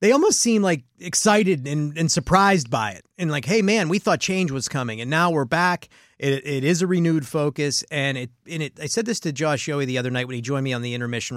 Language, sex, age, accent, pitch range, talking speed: English, male, 30-49, American, 135-170 Hz, 260 wpm